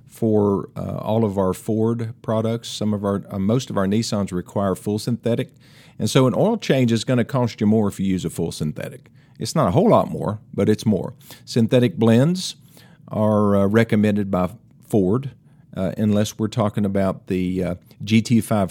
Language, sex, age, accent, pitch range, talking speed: English, male, 50-69, American, 100-125 Hz, 190 wpm